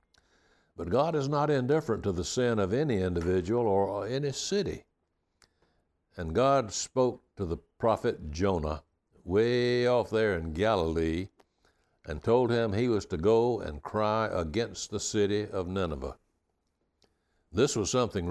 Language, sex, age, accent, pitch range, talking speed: English, male, 60-79, American, 90-120 Hz, 140 wpm